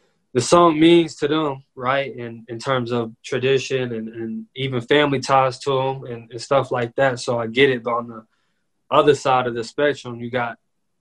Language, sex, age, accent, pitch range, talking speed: English, male, 20-39, American, 115-135 Hz, 200 wpm